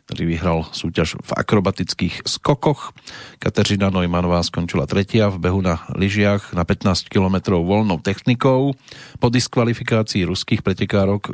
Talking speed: 120 wpm